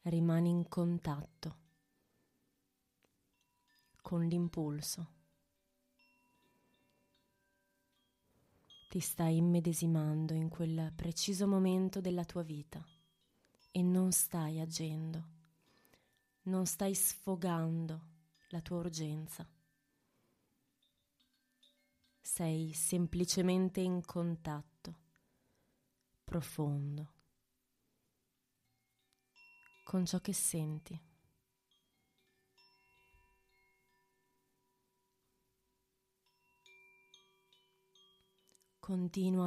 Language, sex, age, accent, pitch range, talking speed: Italian, female, 20-39, native, 160-185 Hz, 55 wpm